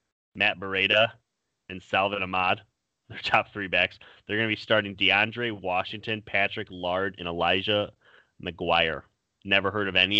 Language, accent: English, American